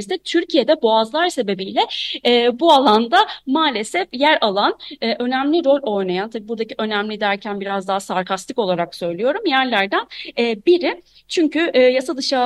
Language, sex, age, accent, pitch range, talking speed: Turkish, female, 30-49, native, 185-275 Hz, 140 wpm